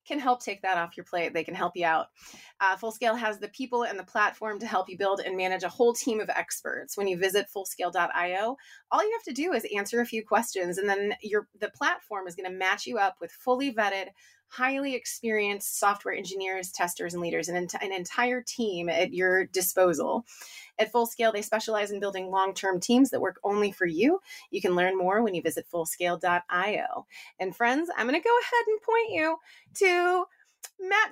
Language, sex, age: English, female, 30-49